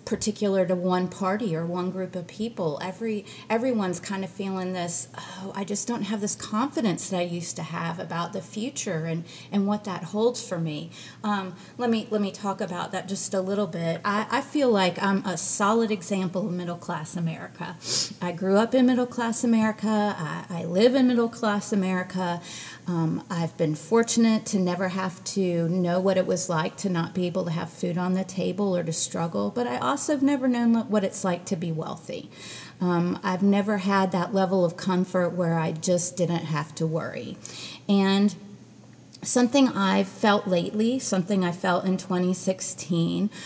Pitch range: 175-215 Hz